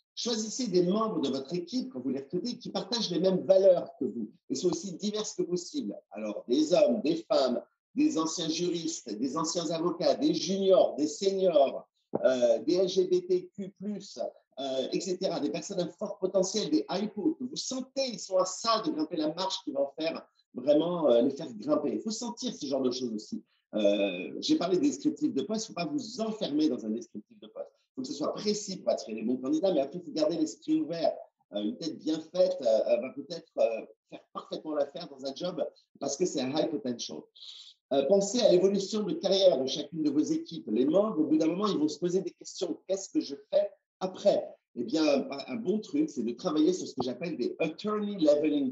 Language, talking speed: English, 210 wpm